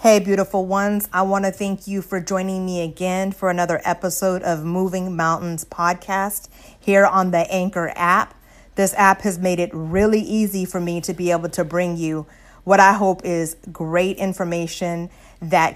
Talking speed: 175 wpm